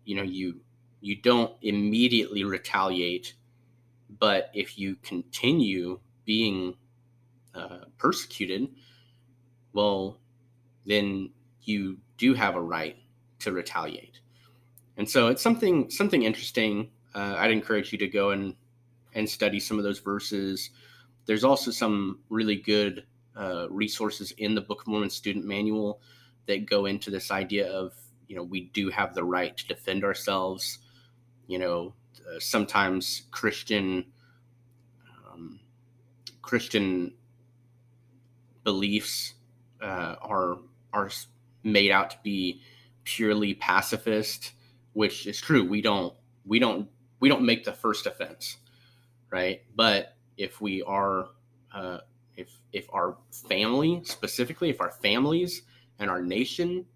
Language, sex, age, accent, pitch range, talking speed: English, male, 30-49, American, 100-120 Hz, 125 wpm